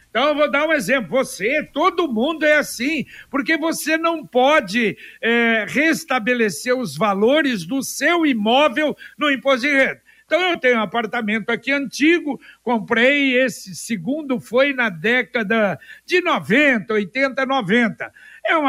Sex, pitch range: male, 235-295 Hz